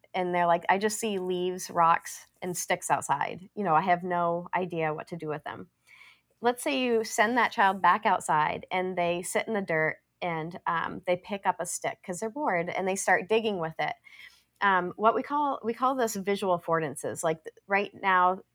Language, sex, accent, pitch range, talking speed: English, female, American, 175-215 Hz, 205 wpm